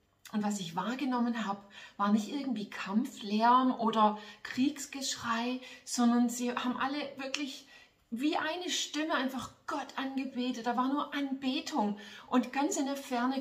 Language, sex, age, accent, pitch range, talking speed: German, female, 30-49, German, 205-255 Hz, 140 wpm